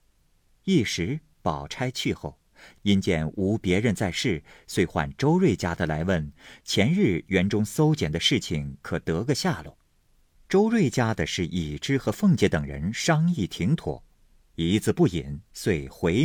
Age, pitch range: 50-69, 85-140 Hz